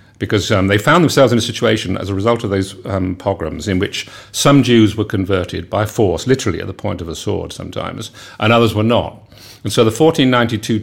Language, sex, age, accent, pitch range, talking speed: English, male, 50-69, British, 95-115 Hz, 215 wpm